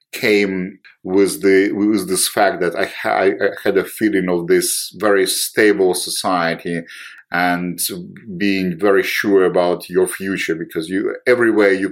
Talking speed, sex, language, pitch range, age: 145 wpm, male, English, 90-115 Hz, 50-69